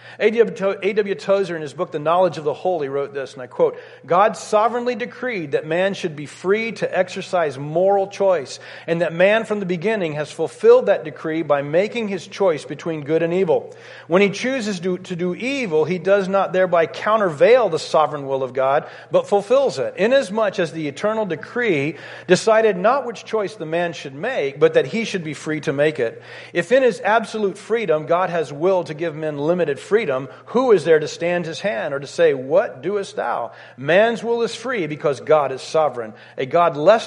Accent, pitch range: American, 155-220 Hz